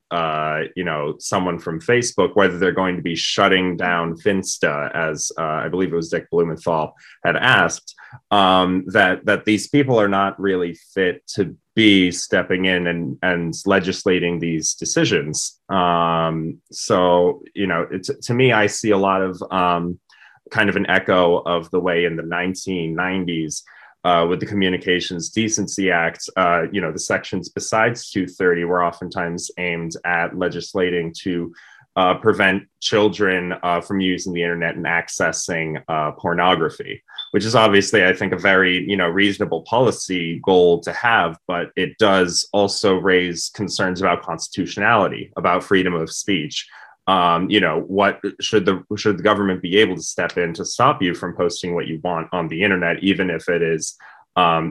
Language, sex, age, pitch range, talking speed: Arabic, male, 30-49, 85-100 Hz, 165 wpm